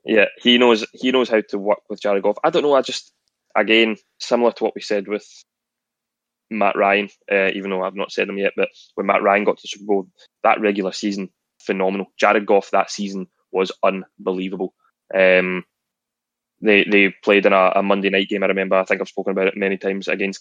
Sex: male